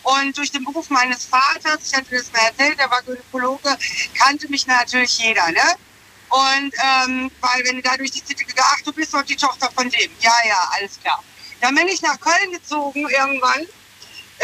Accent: German